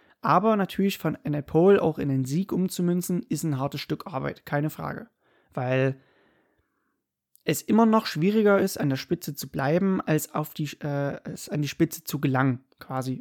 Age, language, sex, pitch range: 20-39, German, male, 140-180 Hz